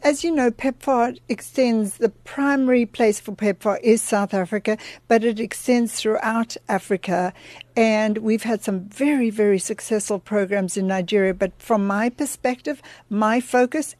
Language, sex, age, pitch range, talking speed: English, female, 60-79, 200-240 Hz, 145 wpm